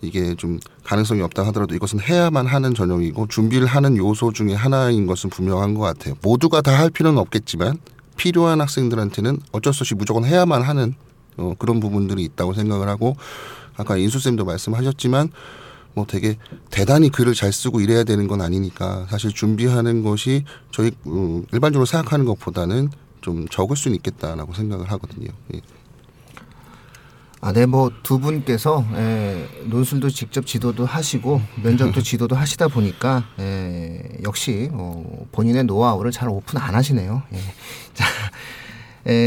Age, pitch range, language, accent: 30-49, 100-135 Hz, Korean, native